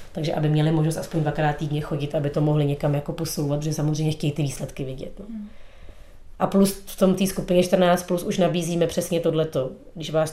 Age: 30-49